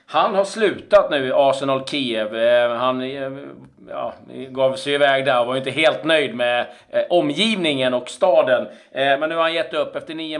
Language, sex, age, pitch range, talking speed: Swedish, male, 40-59, 130-155 Hz, 165 wpm